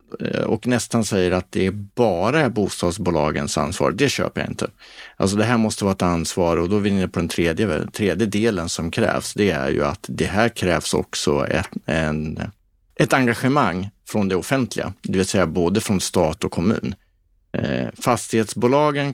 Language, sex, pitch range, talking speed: Swedish, male, 90-115 Hz, 170 wpm